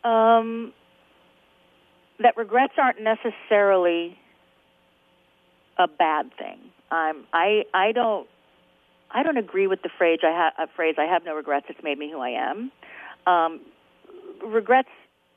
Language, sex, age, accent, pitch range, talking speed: English, female, 40-59, American, 175-220 Hz, 135 wpm